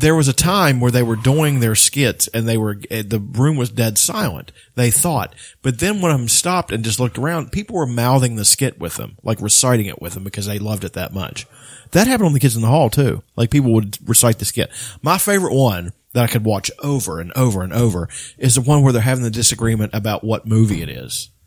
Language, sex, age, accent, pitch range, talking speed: English, male, 40-59, American, 115-165 Hz, 245 wpm